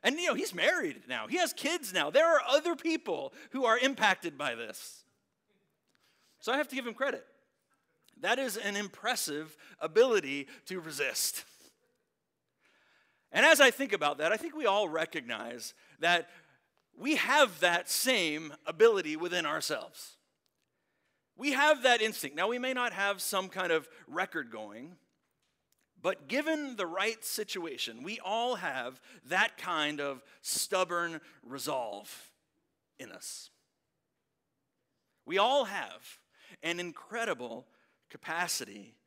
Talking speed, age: 135 wpm, 40-59